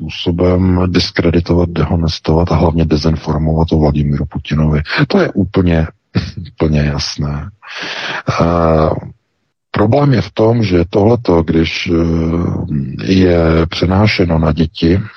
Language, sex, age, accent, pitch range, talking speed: Czech, male, 50-69, native, 80-100 Hz, 90 wpm